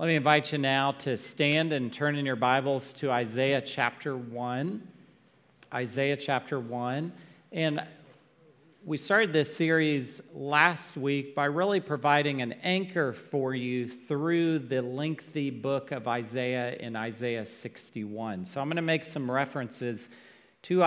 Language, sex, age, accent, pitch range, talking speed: English, male, 40-59, American, 125-155 Hz, 145 wpm